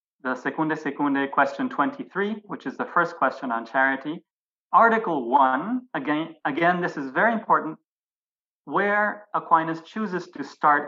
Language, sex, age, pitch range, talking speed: English, male, 30-49, 135-180 Hz, 140 wpm